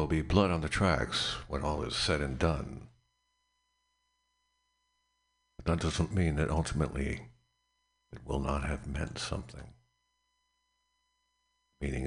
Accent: American